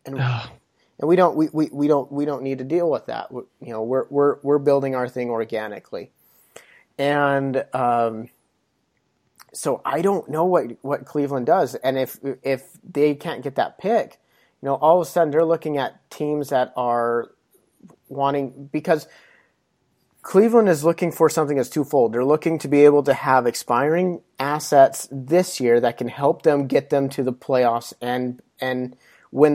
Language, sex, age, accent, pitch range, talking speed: English, male, 30-49, American, 125-155 Hz, 180 wpm